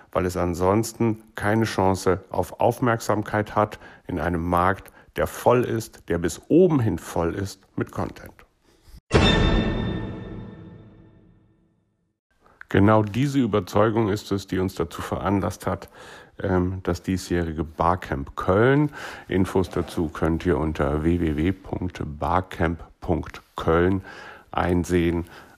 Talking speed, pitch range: 100 wpm, 90-115 Hz